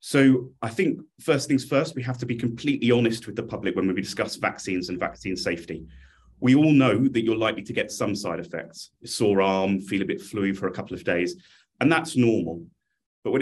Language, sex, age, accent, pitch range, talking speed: English, male, 30-49, British, 95-120 Hz, 220 wpm